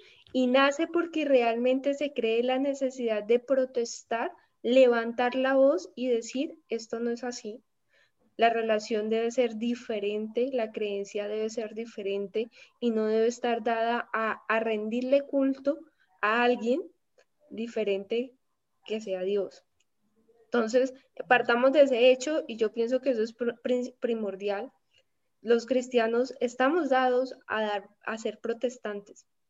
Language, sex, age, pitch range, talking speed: Spanish, female, 10-29, 225-270 Hz, 130 wpm